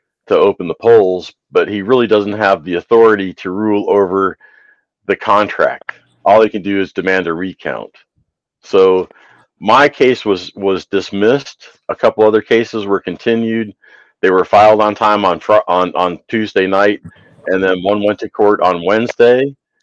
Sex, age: male, 50-69